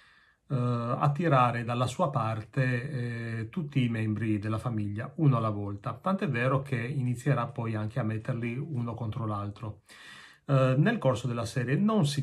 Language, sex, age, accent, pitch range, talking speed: Italian, male, 30-49, native, 115-140 Hz, 145 wpm